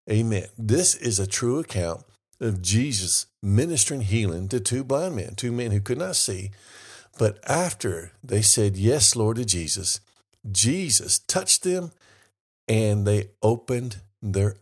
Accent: American